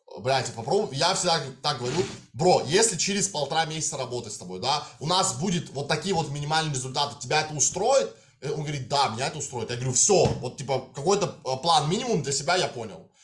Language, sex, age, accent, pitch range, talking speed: Russian, male, 20-39, native, 130-180 Hz, 195 wpm